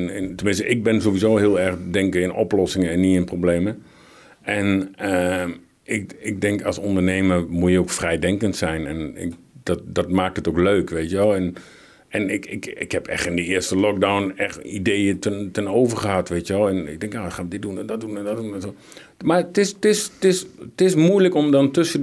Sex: male